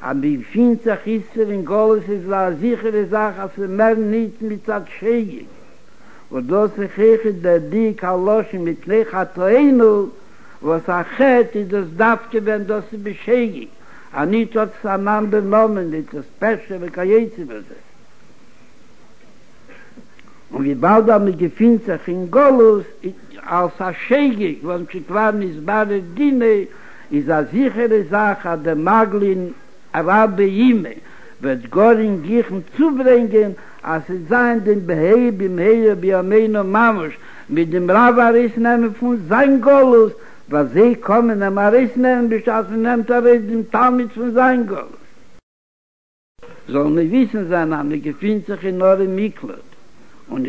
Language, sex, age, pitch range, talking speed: Hebrew, male, 60-79, 185-230 Hz, 120 wpm